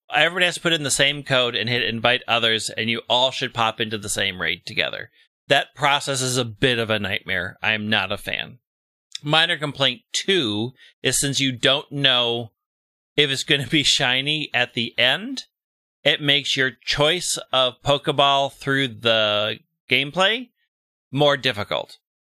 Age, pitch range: 30-49, 115-145 Hz